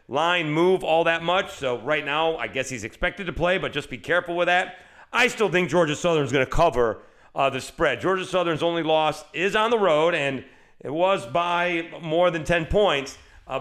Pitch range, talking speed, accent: 130-185 Hz, 210 wpm, American